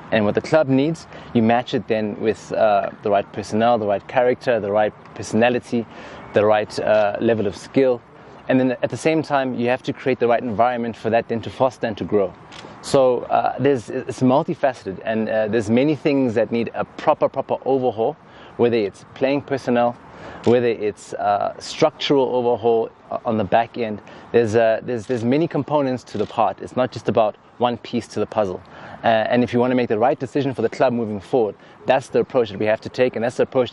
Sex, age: male, 20-39